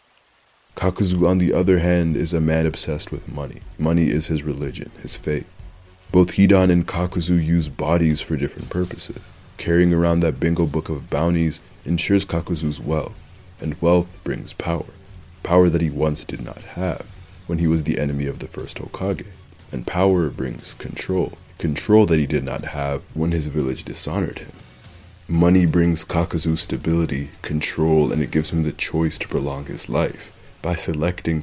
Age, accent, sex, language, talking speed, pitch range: 20-39, American, male, English, 170 wpm, 80-90 Hz